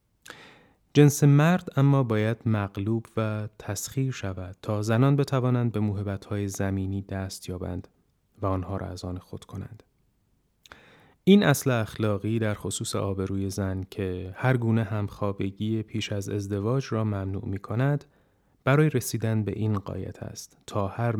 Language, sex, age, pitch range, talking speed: Persian, male, 30-49, 100-120 Hz, 140 wpm